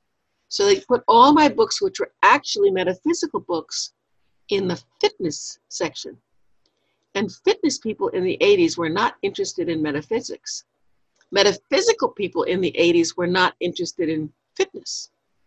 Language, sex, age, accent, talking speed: English, female, 60-79, American, 140 wpm